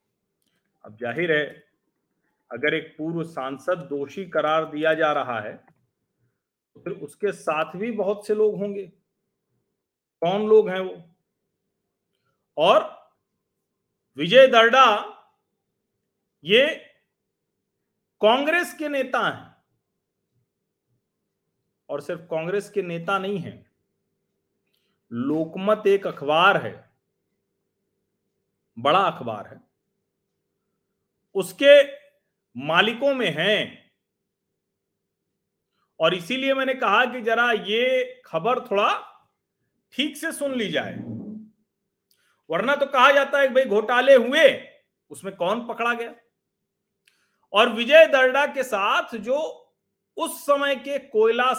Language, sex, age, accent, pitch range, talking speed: Hindi, male, 40-59, native, 185-265 Hz, 100 wpm